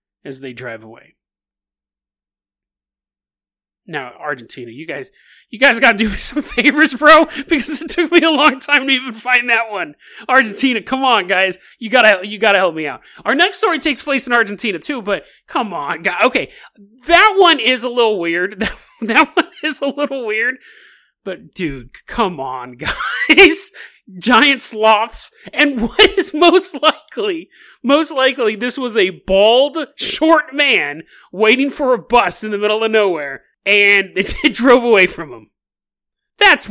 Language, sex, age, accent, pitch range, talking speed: English, male, 30-49, American, 185-280 Hz, 165 wpm